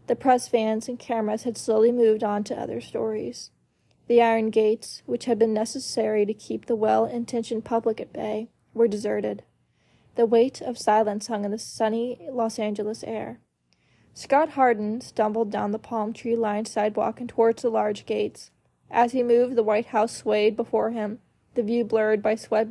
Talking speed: 175 wpm